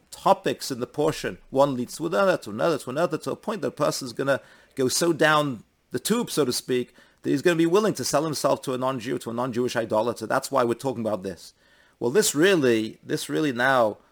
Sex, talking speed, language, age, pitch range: male, 235 wpm, English, 40-59, 120-160 Hz